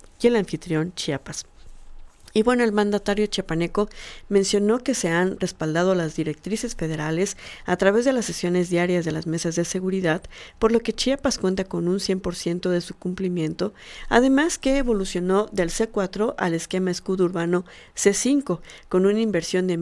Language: Spanish